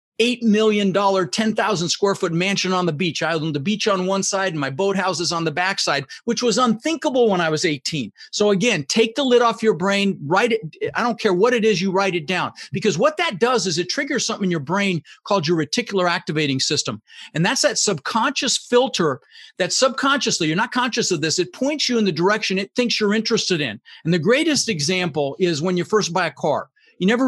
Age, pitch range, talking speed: 50-69, 175-225 Hz, 220 wpm